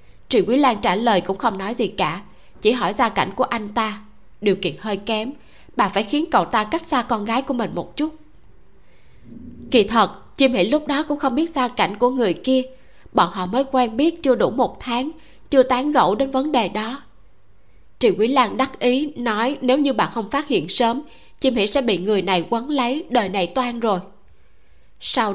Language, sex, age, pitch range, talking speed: Vietnamese, female, 20-39, 200-260 Hz, 215 wpm